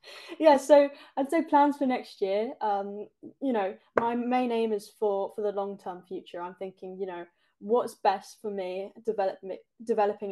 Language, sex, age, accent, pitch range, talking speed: English, female, 10-29, British, 195-220 Hz, 175 wpm